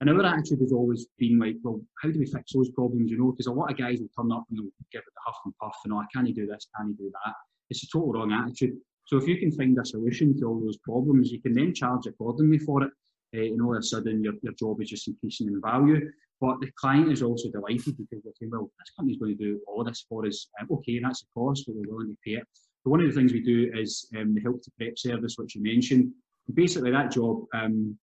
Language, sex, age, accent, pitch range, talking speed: English, male, 20-39, British, 105-130 Hz, 280 wpm